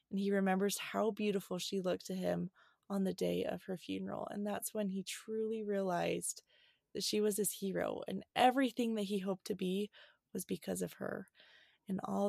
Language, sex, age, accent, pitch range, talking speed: English, female, 20-39, American, 185-215 Hz, 190 wpm